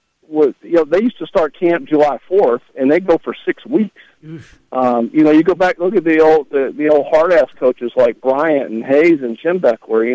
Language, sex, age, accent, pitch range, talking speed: English, male, 50-69, American, 125-165 Hz, 230 wpm